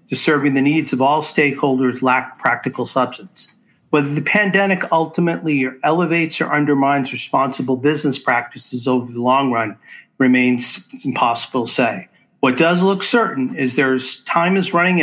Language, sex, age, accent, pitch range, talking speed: English, male, 50-69, American, 130-155 Hz, 150 wpm